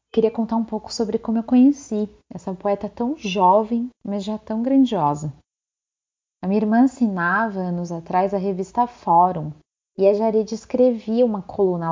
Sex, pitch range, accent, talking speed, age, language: female, 180-220 Hz, Brazilian, 160 wpm, 30-49, Portuguese